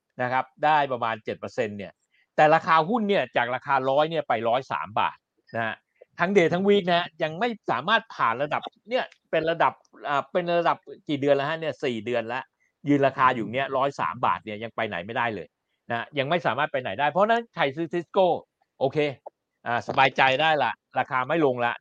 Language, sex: Thai, male